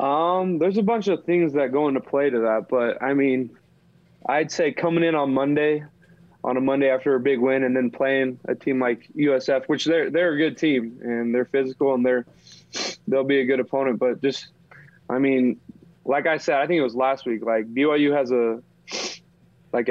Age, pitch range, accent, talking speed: 20-39, 120-140 Hz, American, 210 wpm